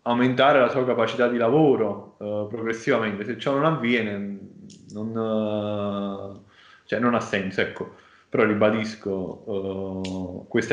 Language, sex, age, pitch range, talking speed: Italian, male, 20-39, 105-125 Hz, 130 wpm